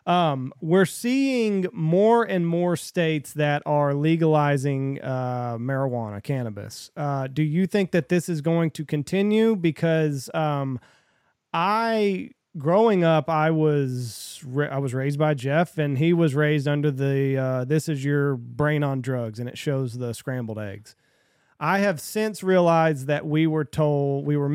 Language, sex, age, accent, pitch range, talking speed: English, male, 30-49, American, 135-165 Hz, 155 wpm